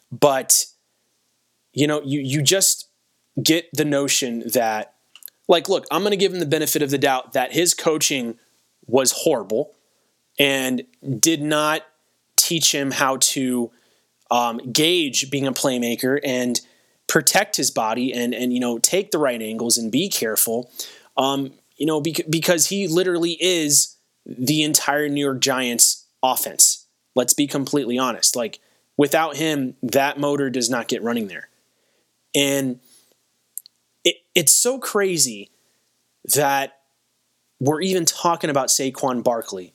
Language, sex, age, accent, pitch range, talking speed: English, male, 20-39, American, 130-165 Hz, 140 wpm